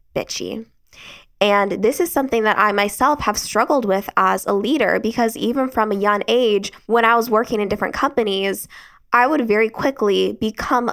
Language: English